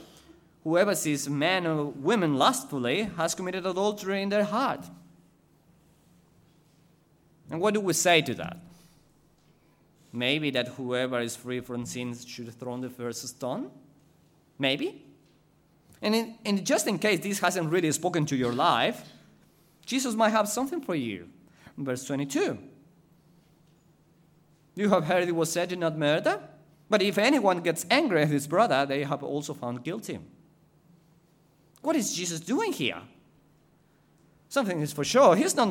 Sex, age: male, 30-49